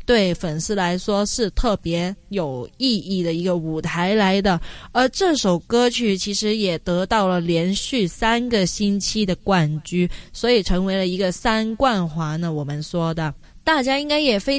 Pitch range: 180-245 Hz